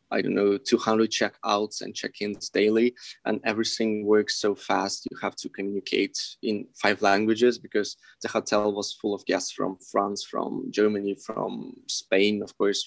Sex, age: male, 20-39